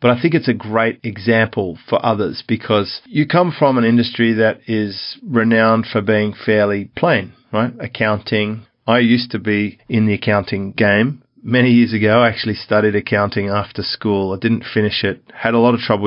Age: 40-59